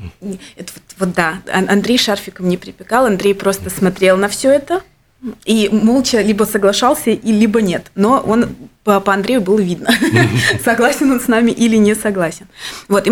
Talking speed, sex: 150 wpm, female